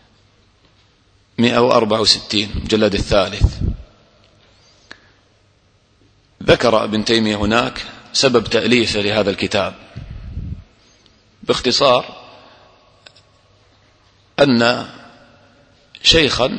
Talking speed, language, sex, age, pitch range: 50 wpm, English, male, 40-59, 100-115 Hz